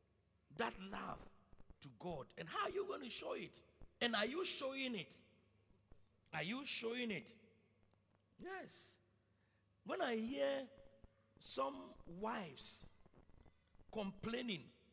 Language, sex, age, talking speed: English, male, 50-69, 115 wpm